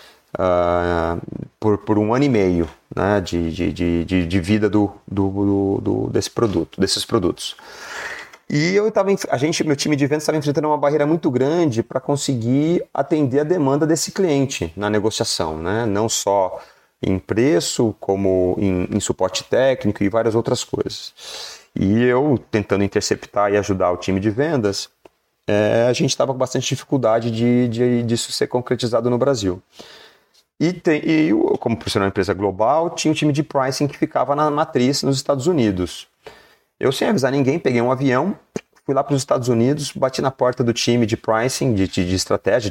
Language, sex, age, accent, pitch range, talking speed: Portuguese, male, 30-49, Brazilian, 100-135 Hz, 165 wpm